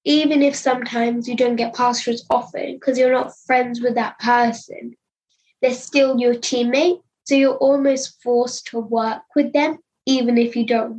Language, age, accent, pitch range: English, 10-29, British, 235-275 Hz